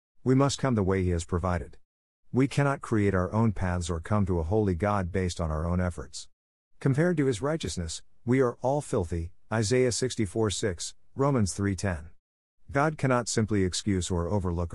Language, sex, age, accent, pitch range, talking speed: English, male, 50-69, American, 90-120 Hz, 175 wpm